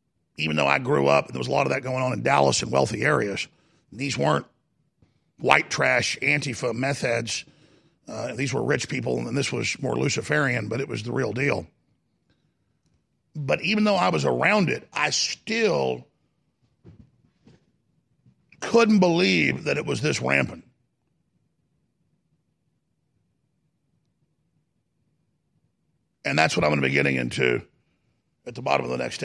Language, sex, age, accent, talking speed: English, male, 50-69, American, 150 wpm